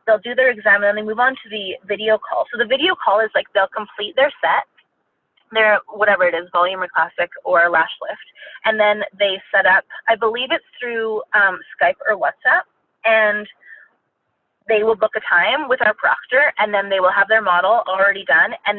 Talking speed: 210 wpm